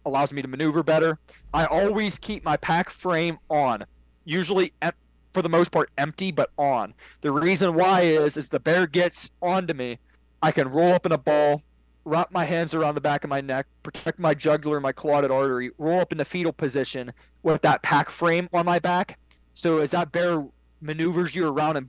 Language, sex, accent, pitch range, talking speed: English, male, American, 130-165 Hz, 205 wpm